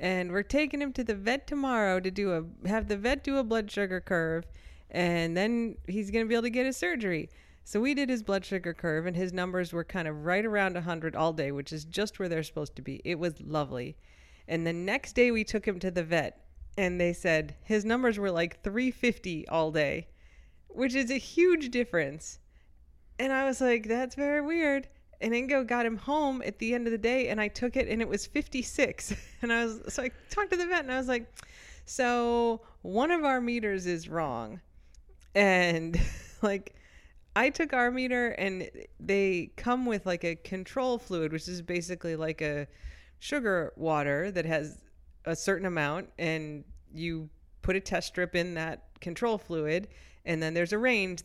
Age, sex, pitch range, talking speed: 30-49, female, 165-240 Hz, 200 wpm